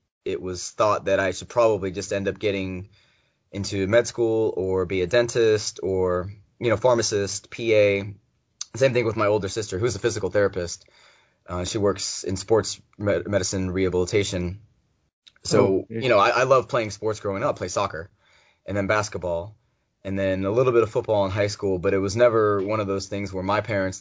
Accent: American